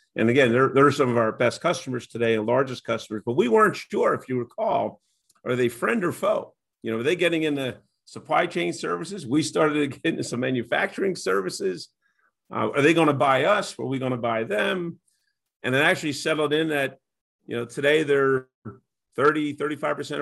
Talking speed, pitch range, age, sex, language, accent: 195 wpm, 115-145 Hz, 50-69, male, English, American